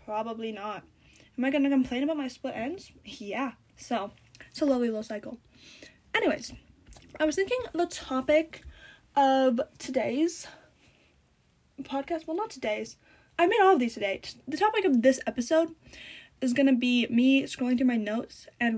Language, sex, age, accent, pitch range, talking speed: English, female, 10-29, American, 235-305 Hz, 165 wpm